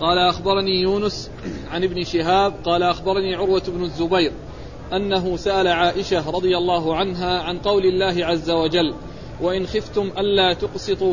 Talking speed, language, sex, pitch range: 140 wpm, Arabic, male, 180-200 Hz